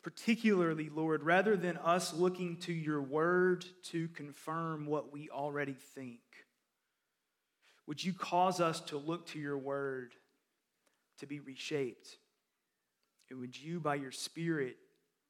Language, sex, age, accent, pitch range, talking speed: English, male, 30-49, American, 145-185 Hz, 130 wpm